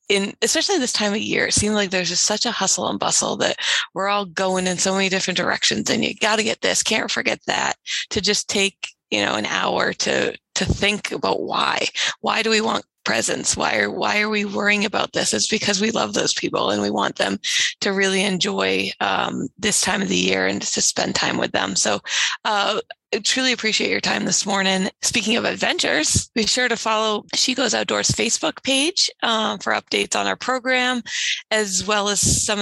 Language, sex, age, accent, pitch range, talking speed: English, female, 20-39, American, 195-230 Hz, 210 wpm